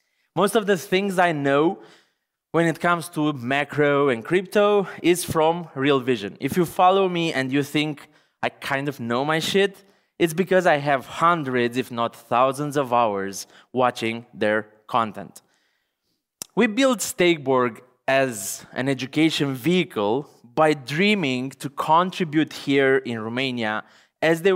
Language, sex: Romanian, male